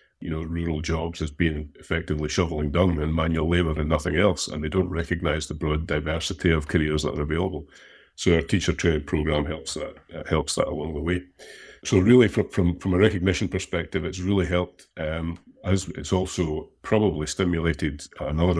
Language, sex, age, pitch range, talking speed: English, male, 50-69, 75-90 Hz, 185 wpm